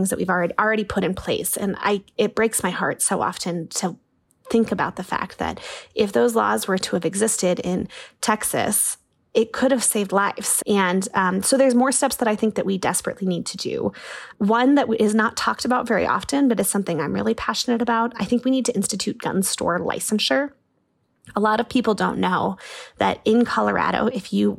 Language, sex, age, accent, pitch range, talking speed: English, female, 20-39, American, 195-235 Hz, 205 wpm